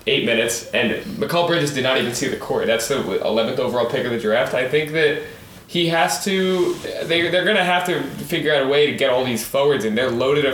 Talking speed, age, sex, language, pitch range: 250 wpm, 20-39, male, English, 110-135 Hz